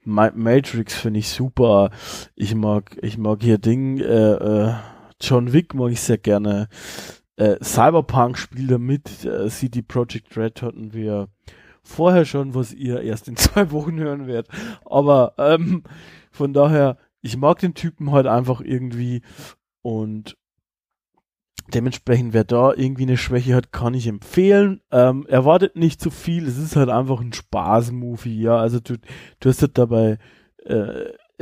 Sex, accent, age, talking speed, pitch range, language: male, German, 20-39, 150 wpm, 110-135 Hz, German